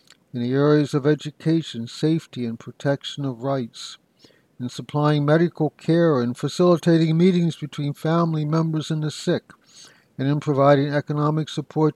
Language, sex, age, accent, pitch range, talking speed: English, male, 60-79, American, 125-155 Hz, 140 wpm